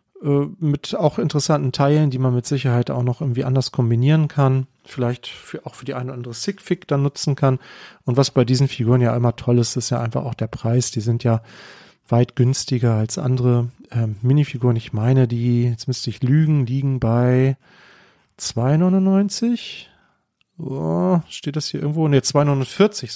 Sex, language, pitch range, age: male, German, 115-140 Hz, 40-59